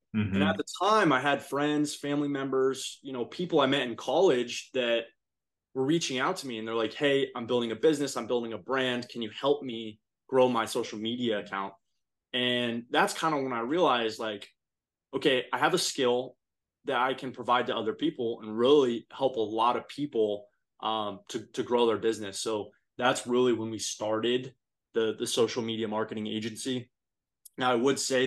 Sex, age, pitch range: male, 20-39, 110-125 Hz